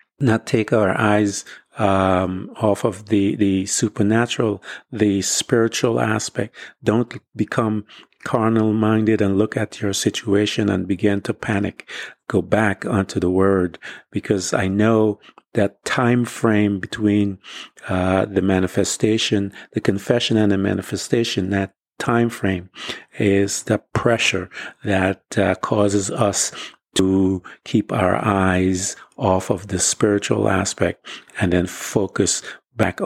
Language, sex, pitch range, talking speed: English, male, 100-115 Hz, 125 wpm